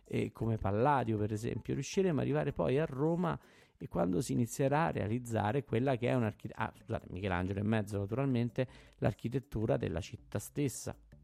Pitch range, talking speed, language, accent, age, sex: 105-130 Hz, 165 wpm, Italian, native, 50-69, male